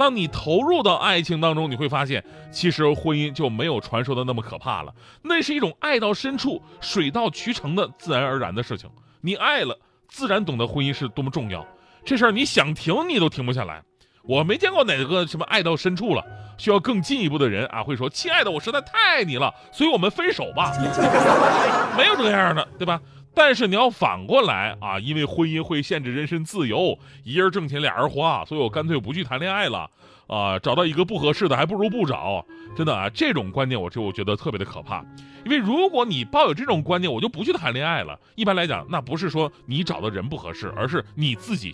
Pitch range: 125-200 Hz